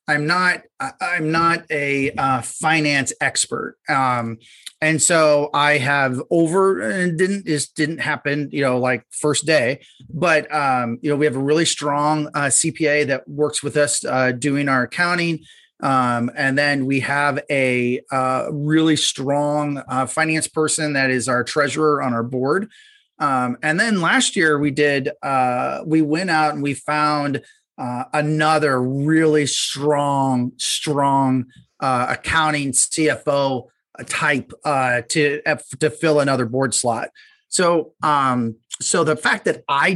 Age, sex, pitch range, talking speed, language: 30-49, male, 135-160 Hz, 150 wpm, English